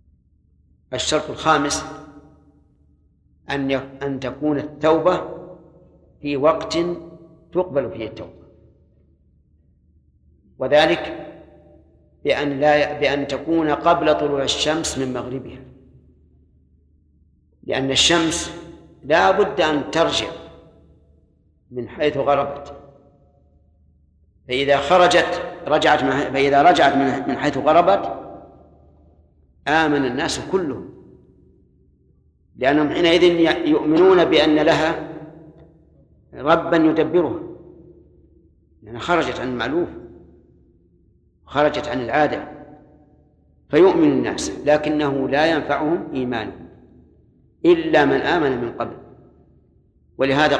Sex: male